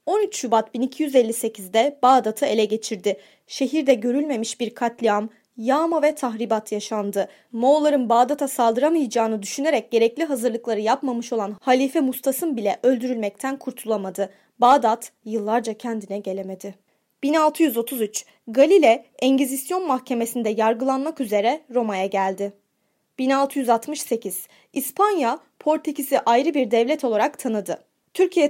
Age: 20-39